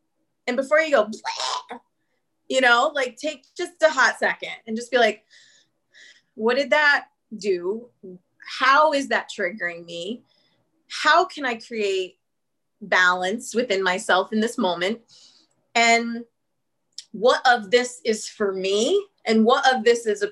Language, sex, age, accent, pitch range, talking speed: English, female, 30-49, American, 205-260 Hz, 140 wpm